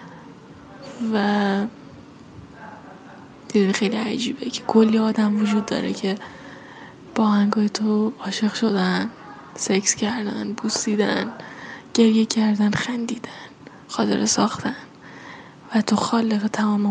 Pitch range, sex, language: 210-230 Hz, female, Persian